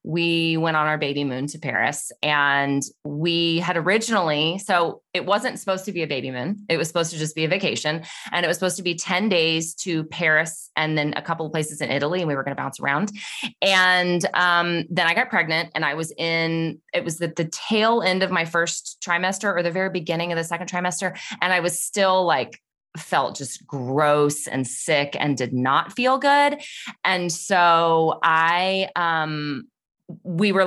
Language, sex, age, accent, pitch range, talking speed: English, female, 20-39, American, 160-200 Hz, 200 wpm